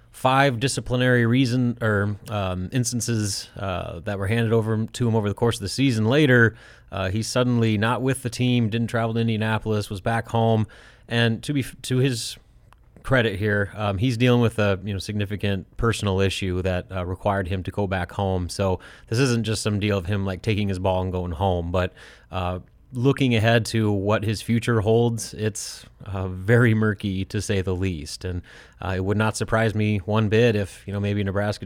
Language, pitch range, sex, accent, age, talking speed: English, 95-115 Hz, male, American, 30-49, 195 wpm